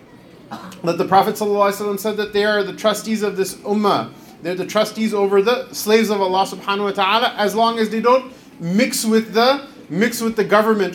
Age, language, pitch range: 30-49, English, 175-235 Hz